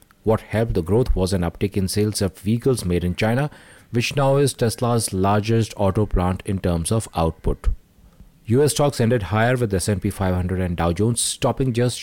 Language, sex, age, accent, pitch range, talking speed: English, male, 30-49, Indian, 95-120 Hz, 185 wpm